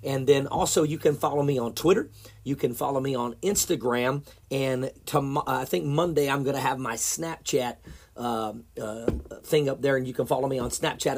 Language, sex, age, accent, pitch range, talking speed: English, male, 40-59, American, 110-155 Hz, 200 wpm